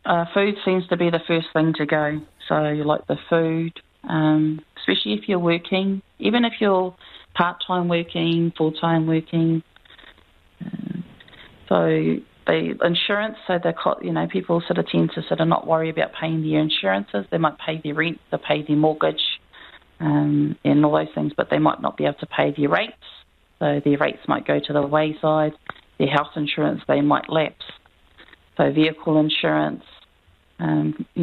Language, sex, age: English, female, 30-49